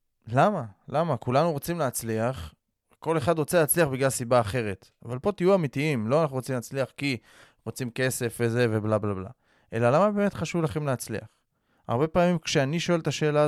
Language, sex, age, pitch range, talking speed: Hebrew, male, 20-39, 120-155 Hz, 165 wpm